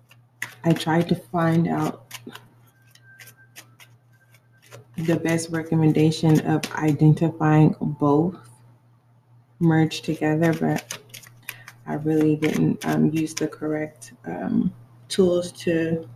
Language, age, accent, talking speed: English, 20-39, American, 90 wpm